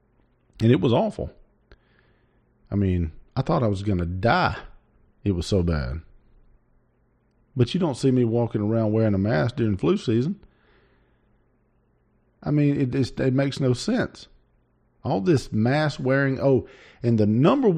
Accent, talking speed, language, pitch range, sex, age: American, 150 wpm, English, 100-125 Hz, male, 40-59